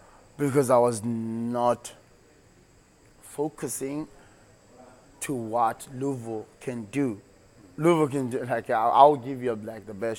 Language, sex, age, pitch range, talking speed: English, male, 20-39, 110-130 Hz, 120 wpm